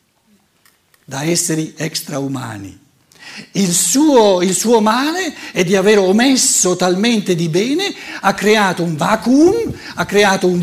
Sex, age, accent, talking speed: male, 60-79, native, 120 wpm